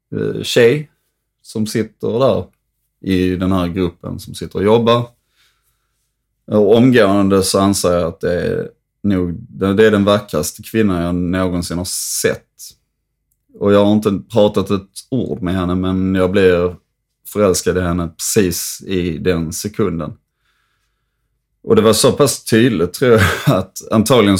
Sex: male